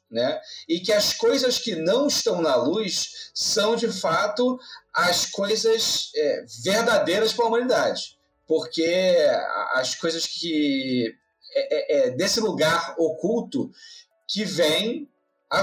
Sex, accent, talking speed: male, Brazilian, 125 wpm